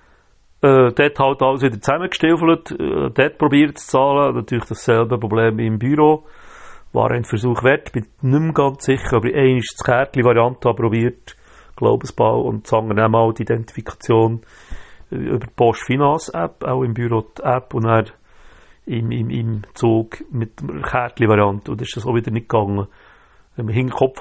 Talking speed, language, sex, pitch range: 155 wpm, German, male, 110-130 Hz